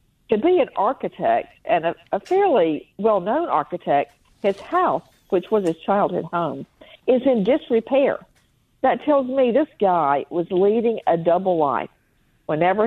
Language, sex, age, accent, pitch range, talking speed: English, female, 50-69, American, 180-245 Hz, 145 wpm